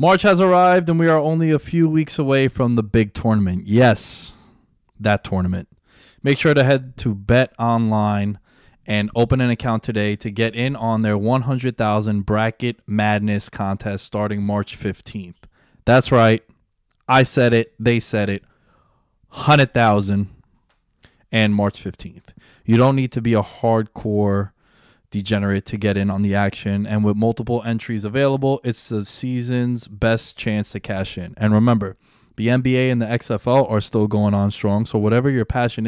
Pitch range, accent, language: 105-125 Hz, American, English